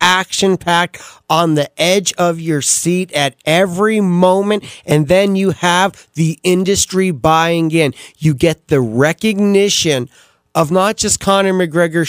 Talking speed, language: 135 wpm, English